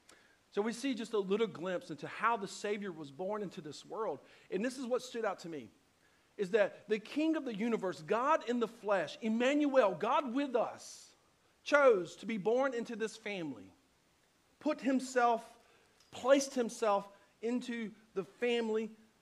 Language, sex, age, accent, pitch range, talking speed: English, male, 50-69, American, 195-255 Hz, 165 wpm